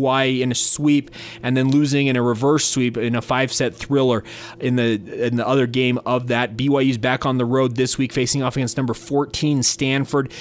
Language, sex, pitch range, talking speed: English, male, 120-145 Hz, 210 wpm